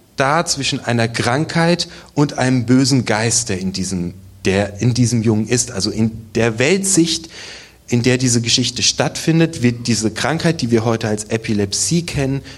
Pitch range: 110-140 Hz